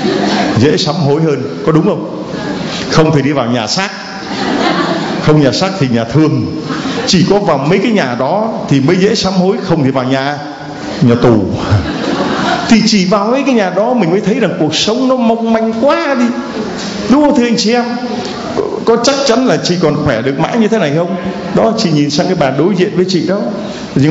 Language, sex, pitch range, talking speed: Vietnamese, male, 170-230 Hz, 215 wpm